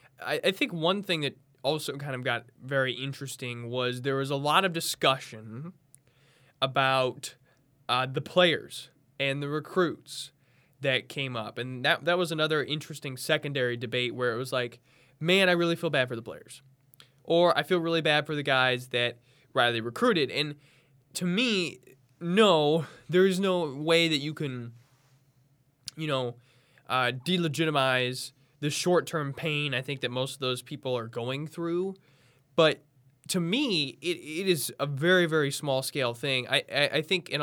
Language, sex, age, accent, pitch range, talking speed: English, male, 20-39, American, 125-155 Hz, 165 wpm